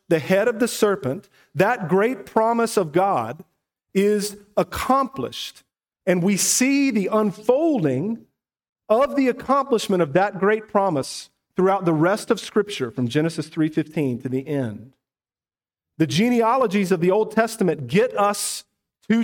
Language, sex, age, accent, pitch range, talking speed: English, male, 40-59, American, 135-205 Hz, 135 wpm